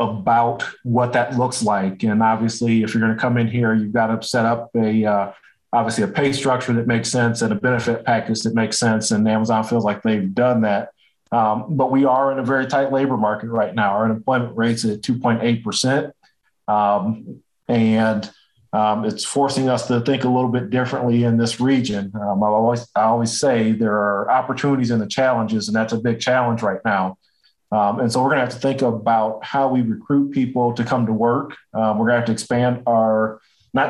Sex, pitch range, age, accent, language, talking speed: male, 110-125 Hz, 40-59, American, English, 210 wpm